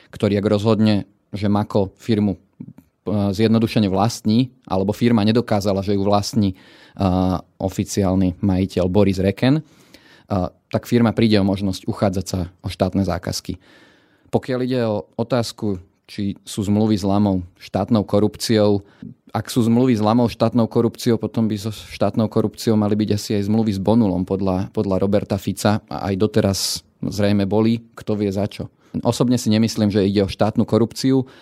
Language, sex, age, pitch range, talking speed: Slovak, male, 30-49, 100-115 Hz, 155 wpm